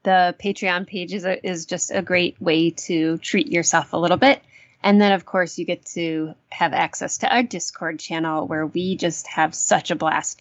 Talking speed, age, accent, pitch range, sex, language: 200 wpm, 20-39, American, 170-220 Hz, female, English